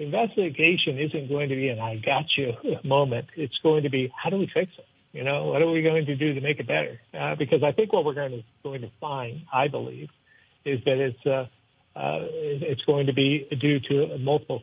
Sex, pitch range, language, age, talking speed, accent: male, 135-155 Hz, English, 60-79, 230 wpm, American